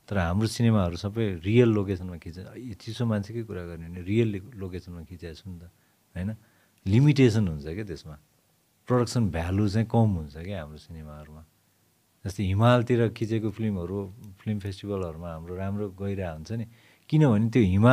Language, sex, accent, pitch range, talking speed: English, male, Indian, 95-125 Hz, 85 wpm